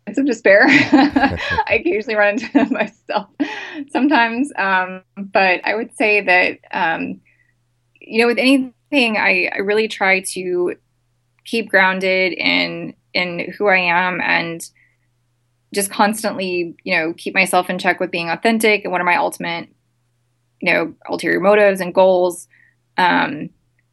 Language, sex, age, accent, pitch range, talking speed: English, female, 20-39, American, 170-200 Hz, 145 wpm